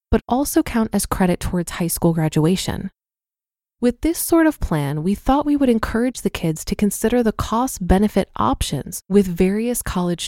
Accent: American